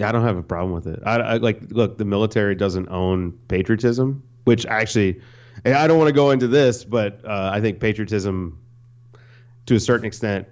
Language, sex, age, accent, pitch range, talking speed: English, male, 30-49, American, 100-120 Hz, 195 wpm